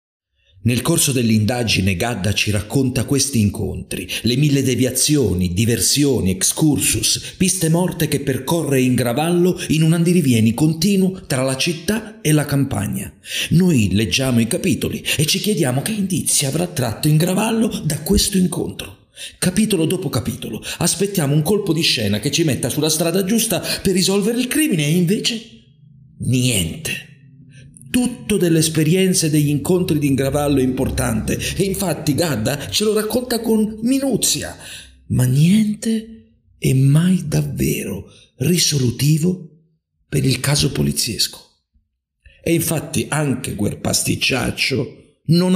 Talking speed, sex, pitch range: 130 wpm, male, 120-175 Hz